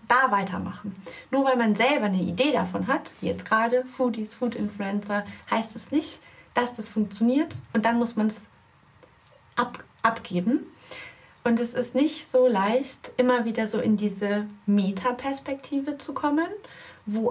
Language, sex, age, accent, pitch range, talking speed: German, female, 30-49, German, 210-270 Hz, 155 wpm